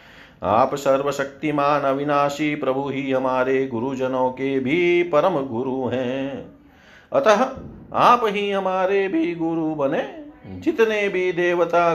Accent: native